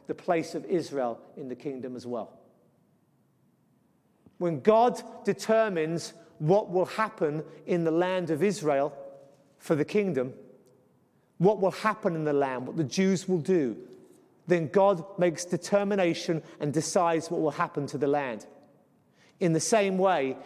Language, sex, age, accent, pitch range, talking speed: English, male, 40-59, British, 145-190 Hz, 145 wpm